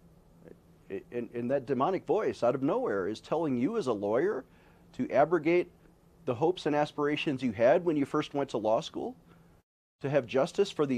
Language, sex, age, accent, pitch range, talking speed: English, male, 40-59, American, 130-180 Hz, 190 wpm